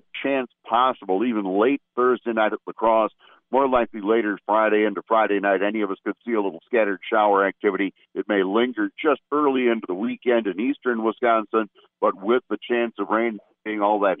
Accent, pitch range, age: American, 105-130 Hz, 50-69